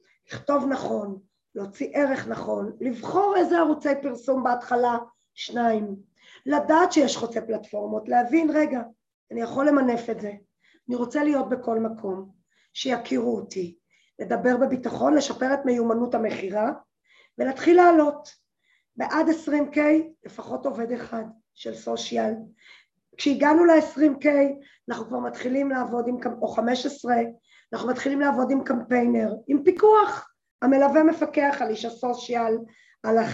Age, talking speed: 20-39, 120 wpm